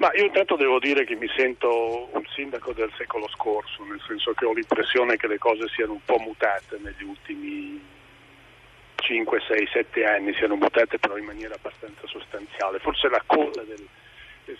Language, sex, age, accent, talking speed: Italian, male, 40-59, native, 175 wpm